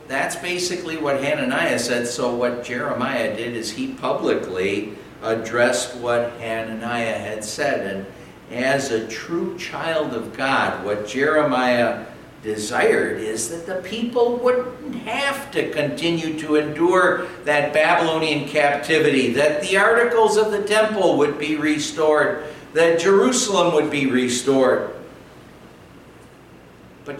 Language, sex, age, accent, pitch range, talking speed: English, male, 60-79, American, 120-165 Hz, 120 wpm